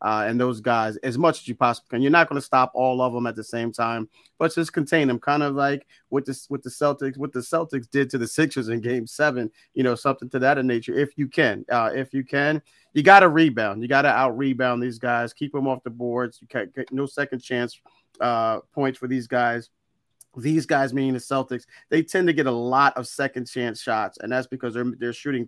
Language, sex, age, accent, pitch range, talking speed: English, male, 30-49, American, 120-135 Hz, 235 wpm